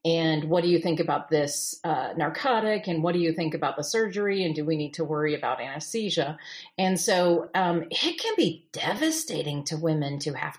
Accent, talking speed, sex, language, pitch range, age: American, 205 wpm, female, English, 165-220 Hz, 40-59